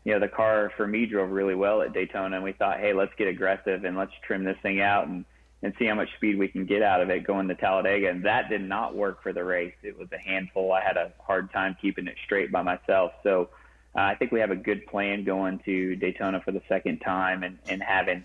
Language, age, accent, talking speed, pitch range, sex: English, 30-49, American, 265 wpm, 95-100 Hz, male